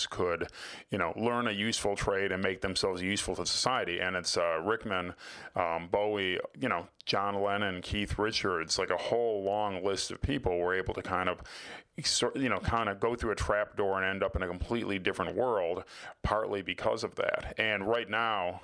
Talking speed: 195 wpm